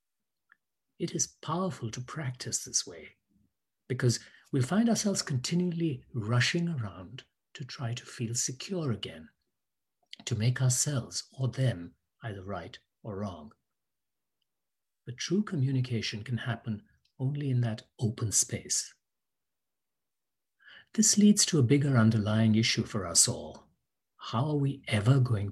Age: 60-79